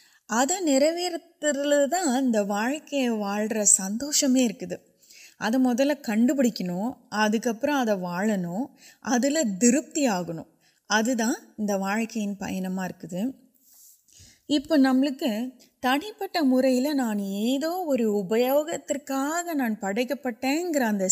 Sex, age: female, 20-39